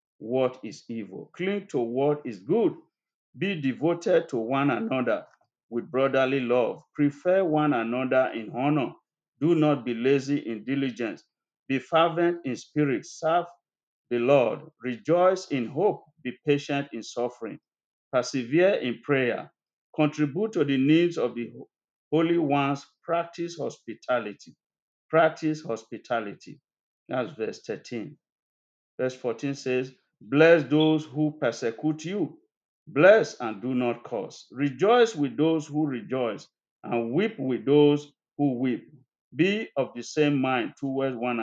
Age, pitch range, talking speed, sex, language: 50-69, 125-165 Hz, 130 wpm, male, English